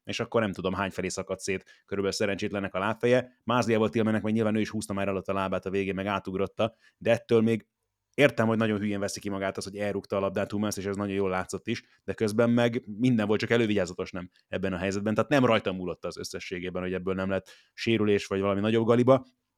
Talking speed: 235 wpm